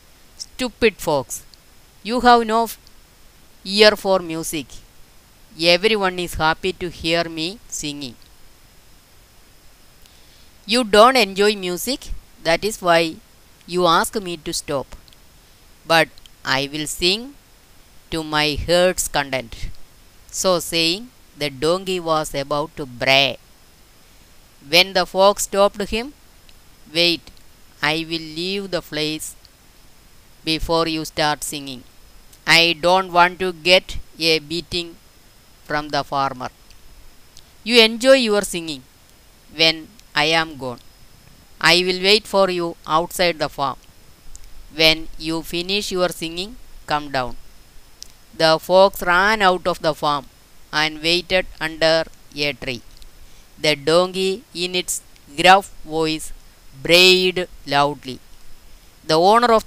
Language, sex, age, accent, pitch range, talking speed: Malayalam, female, 20-39, native, 145-185 Hz, 115 wpm